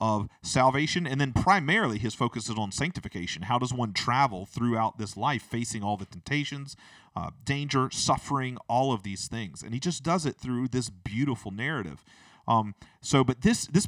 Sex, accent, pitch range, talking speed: male, American, 100-125 Hz, 180 wpm